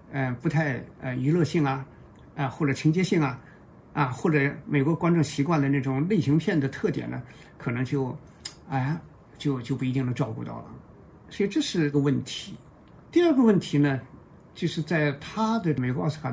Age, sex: 50-69, male